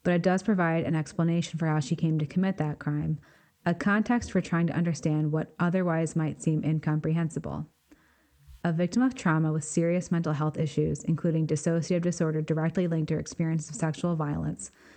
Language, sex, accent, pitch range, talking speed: English, female, American, 155-180 Hz, 180 wpm